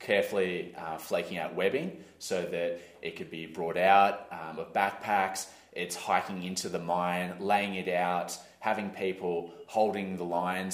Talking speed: 155 wpm